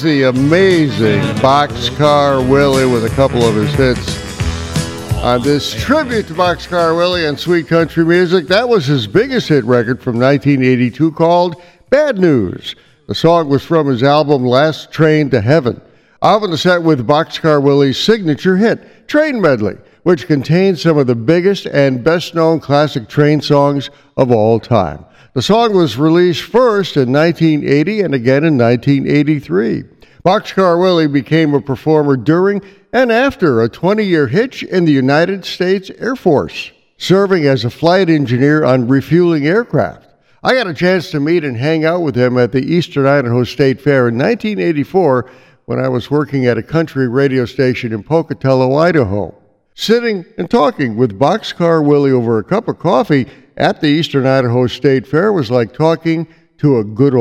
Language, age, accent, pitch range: English, 60-79, American, 130-170 Hz